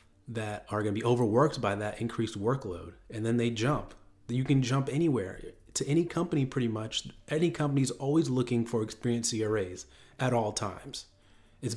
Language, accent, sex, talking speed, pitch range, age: English, American, male, 175 wpm, 105-135 Hz, 30-49